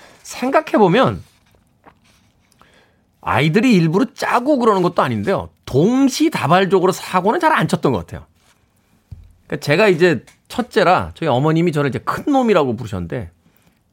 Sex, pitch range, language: male, 115-185 Hz, Korean